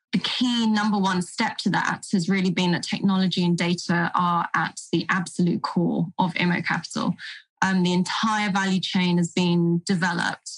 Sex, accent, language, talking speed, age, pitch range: female, British, English, 170 wpm, 10-29, 175-205 Hz